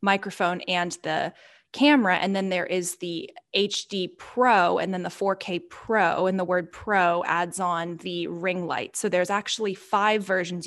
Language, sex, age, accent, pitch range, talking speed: English, female, 10-29, American, 180-230 Hz, 170 wpm